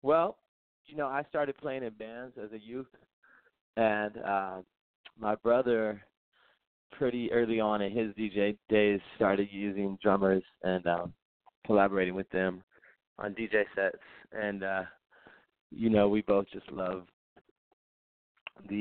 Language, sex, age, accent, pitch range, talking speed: English, male, 20-39, American, 85-105 Hz, 135 wpm